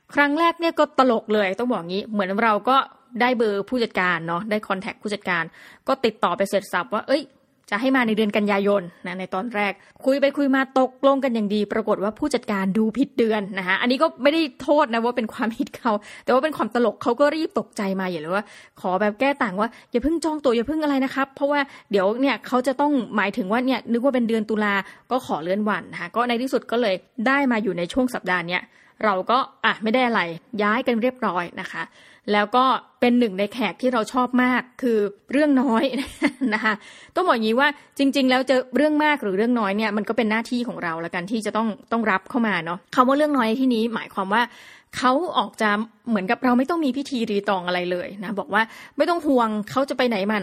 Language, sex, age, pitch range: Thai, female, 20-39, 205-265 Hz